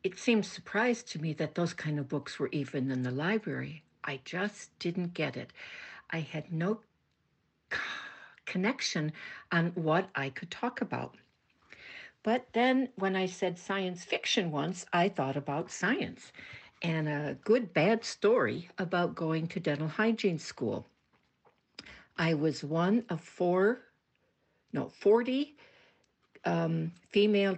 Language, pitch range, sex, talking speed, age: English, 155-205 Hz, female, 135 wpm, 60-79